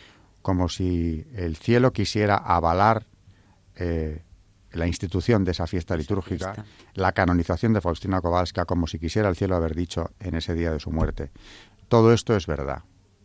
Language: Spanish